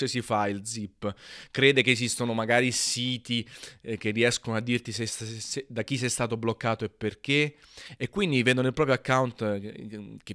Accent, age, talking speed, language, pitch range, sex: native, 30-49, 185 wpm, Italian, 105-130 Hz, male